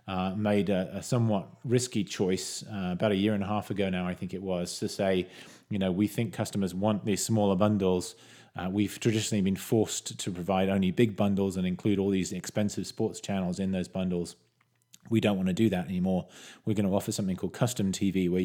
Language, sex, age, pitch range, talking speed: English, male, 30-49, 90-105 Hz, 220 wpm